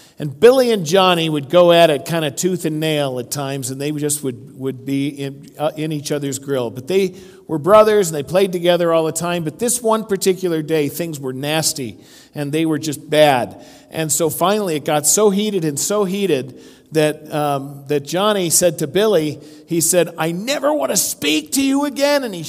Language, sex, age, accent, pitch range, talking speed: English, male, 50-69, American, 155-210 Hz, 215 wpm